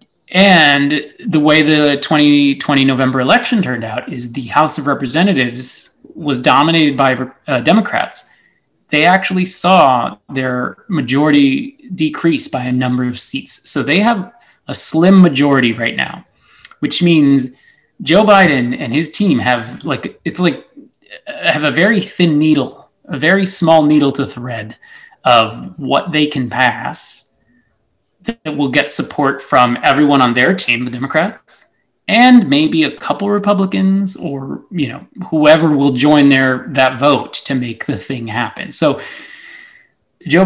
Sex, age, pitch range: male, 30-49, 130-175 Hz